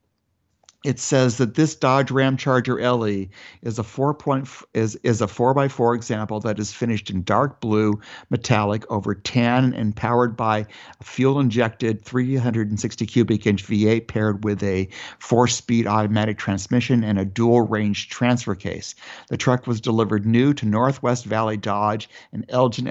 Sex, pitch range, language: male, 105-125 Hz, English